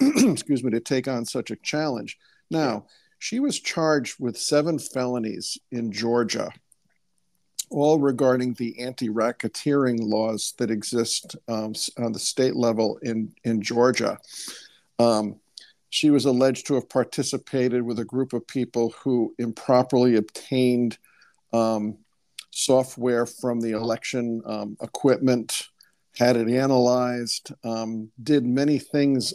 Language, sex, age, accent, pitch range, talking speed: English, male, 50-69, American, 115-135 Hz, 125 wpm